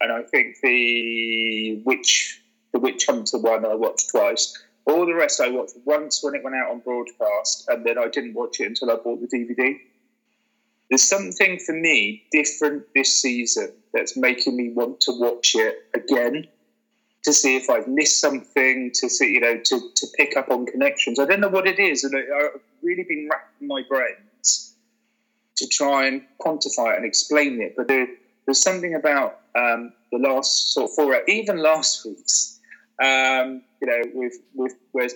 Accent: British